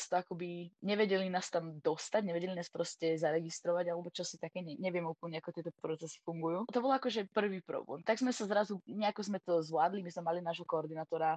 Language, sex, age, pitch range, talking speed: Slovak, female, 20-39, 170-195 Hz, 205 wpm